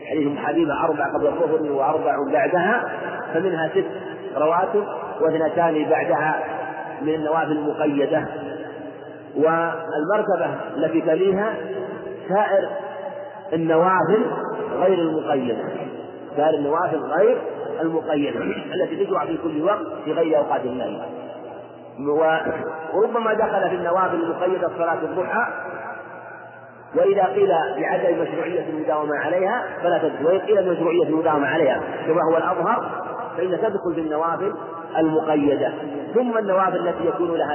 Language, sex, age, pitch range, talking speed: Arabic, male, 40-59, 155-185 Hz, 105 wpm